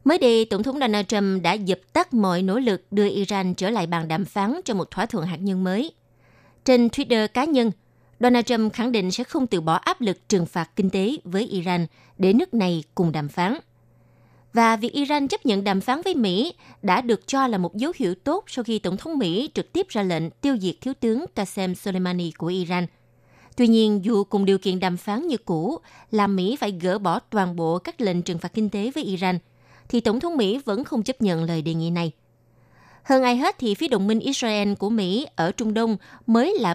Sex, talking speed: female, 225 wpm